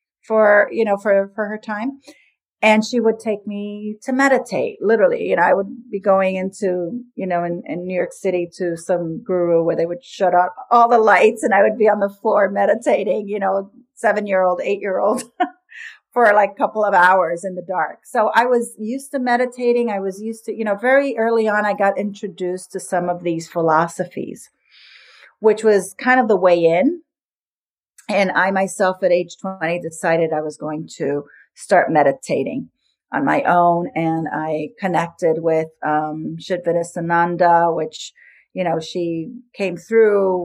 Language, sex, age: English, female, 40-59